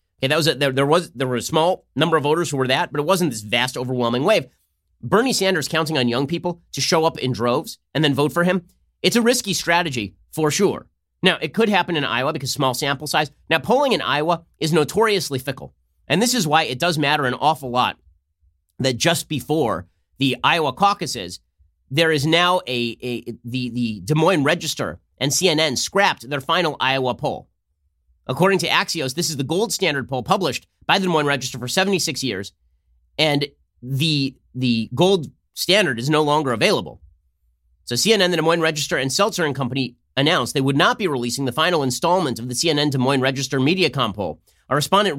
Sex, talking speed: male, 200 wpm